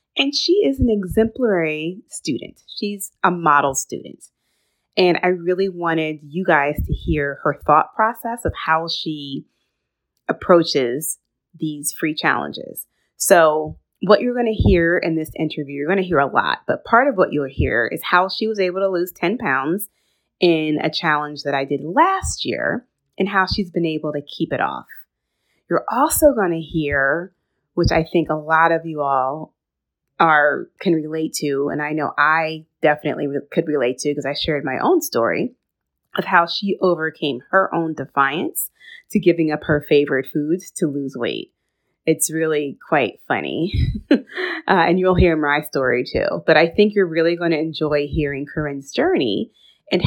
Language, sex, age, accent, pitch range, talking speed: English, female, 30-49, American, 150-185 Hz, 170 wpm